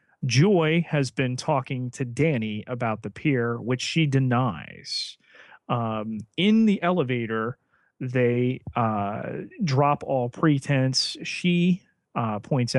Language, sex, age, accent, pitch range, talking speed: English, male, 30-49, American, 115-140 Hz, 115 wpm